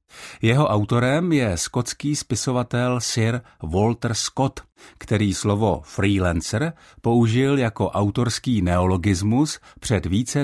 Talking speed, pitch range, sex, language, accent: 100 wpm, 95-125 Hz, male, Czech, native